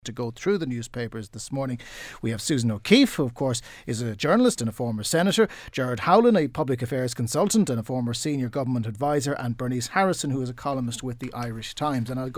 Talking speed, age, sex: 225 wpm, 40-59, male